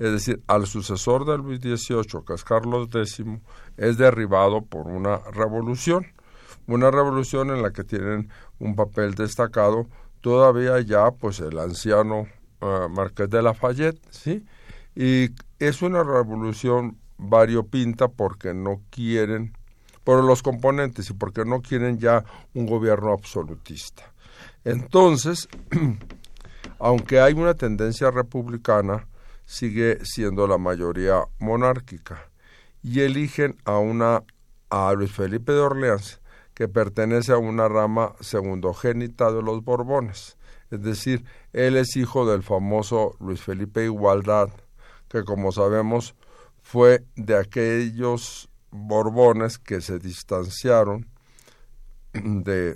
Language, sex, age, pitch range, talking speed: Spanish, male, 50-69, 100-125 Hz, 120 wpm